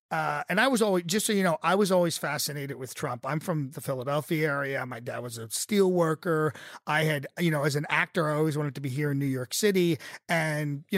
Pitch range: 145-180 Hz